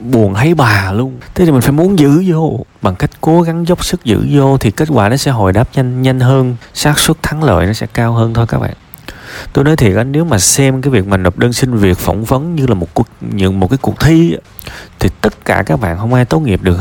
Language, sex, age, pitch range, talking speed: Vietnamese, male, 20-39, 100-135 Hz, 270 wpm